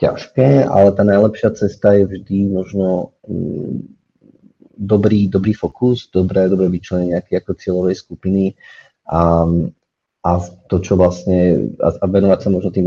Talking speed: 110 wpm